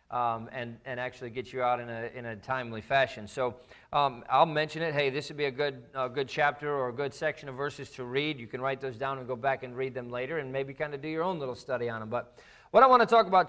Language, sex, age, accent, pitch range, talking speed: English, male, 40-59, American, 130-165 Hz, 290 wpm